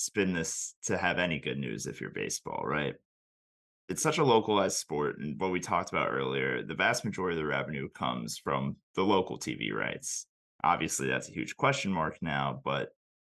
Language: English